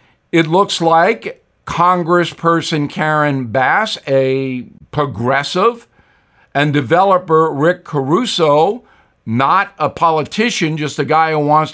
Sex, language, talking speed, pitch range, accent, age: male, English, 100 wpm, 155-195 Hz, American, 50-69